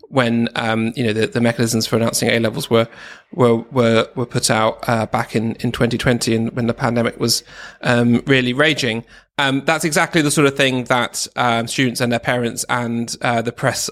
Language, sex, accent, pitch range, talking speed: English, male, British, 120-150 Hz, 205 wpm